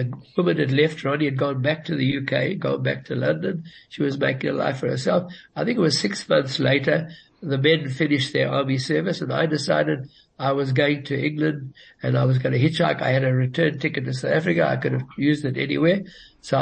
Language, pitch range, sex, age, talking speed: English, 135-160 Hz, male, 60-79, 230 wpm